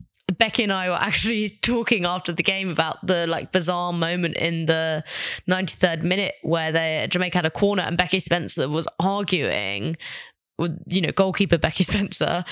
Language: English